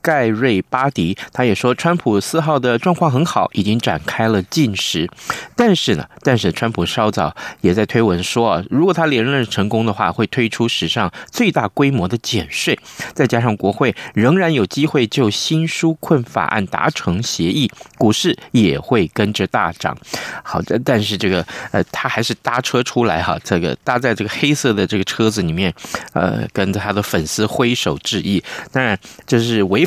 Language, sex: Chinese, male